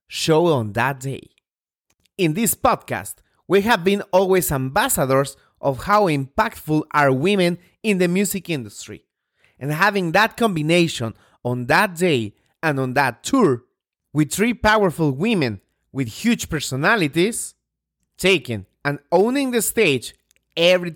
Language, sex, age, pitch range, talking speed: English, male, 30-49, 115-190 Hz, 130 wpm